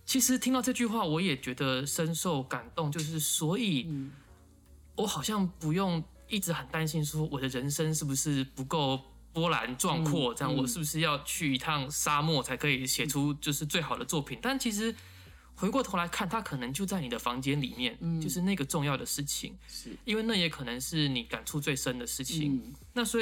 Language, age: Chinese, 20-39